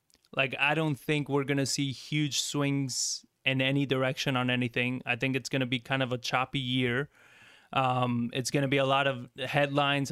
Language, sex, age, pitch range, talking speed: English, male, 20-39, 130-145 Hz, 210 wpm